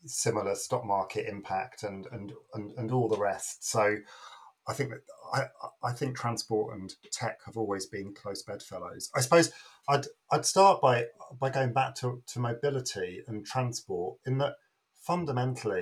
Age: 40-59